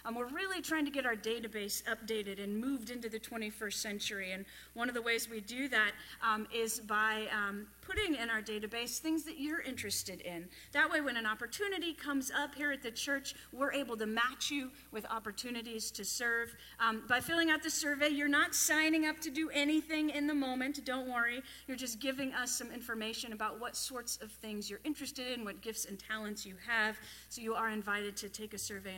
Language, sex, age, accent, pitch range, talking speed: English, female, 30-49, American, 215-290 Hz, 210 wpm